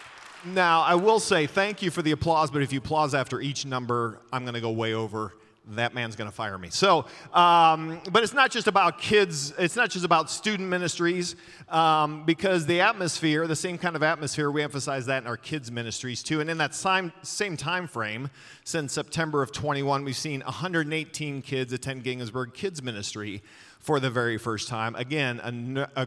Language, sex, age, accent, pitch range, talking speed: English, male, 40-59, American, 130-175 Hz, 200 wpm